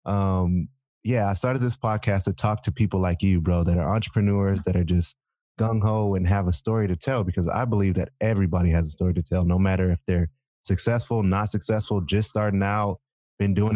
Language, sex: English, male